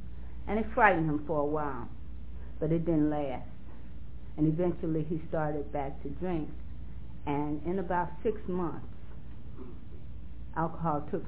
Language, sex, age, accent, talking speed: English, female, 40-59, American, 135 wpm